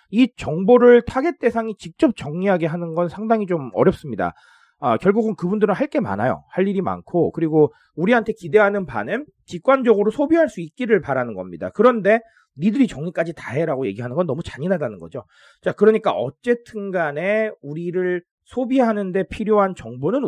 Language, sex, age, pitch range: Korean, male, 30-49, 130-215 Hz